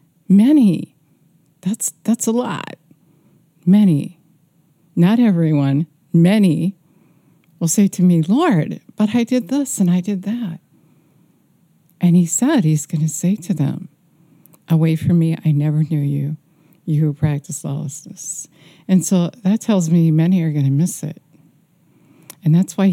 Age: 60-79